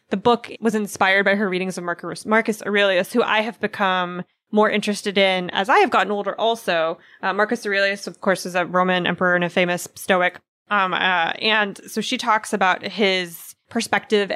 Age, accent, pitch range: 20-39, American, 185-225 Hz